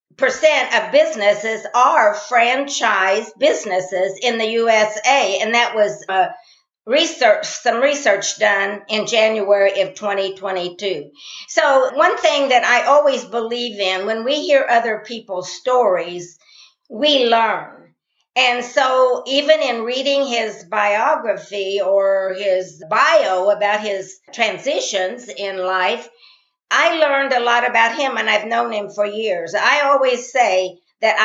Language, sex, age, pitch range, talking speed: English, female, 50-69, 200-265 Hz, 130 wpm